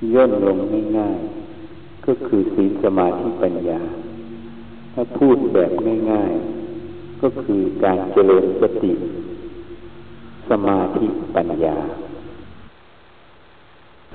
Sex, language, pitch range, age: male, Thai, 310-355 Hz, 50-69